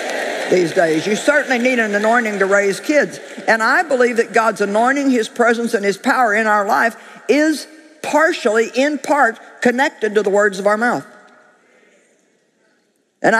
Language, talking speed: English, 160 wpm